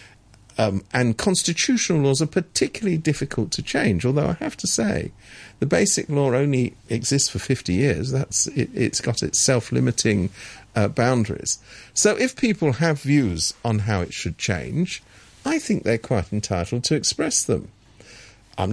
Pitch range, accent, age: 110-180 Hz, British, 50-69